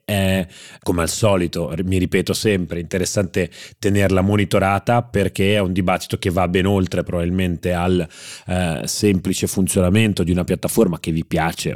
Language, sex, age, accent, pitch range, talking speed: Italian, male, 30-49, native, 85-105 Hz, 150 wpm